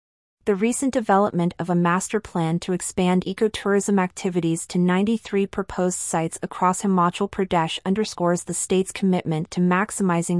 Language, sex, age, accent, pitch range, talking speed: English, female, 30-49, American, 175-200 Hz, 140 wpm